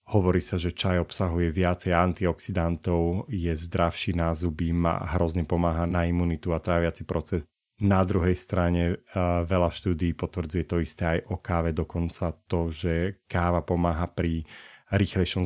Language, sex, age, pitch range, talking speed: Slovak, male, 30-49, 85-95 Hz, 145 wpm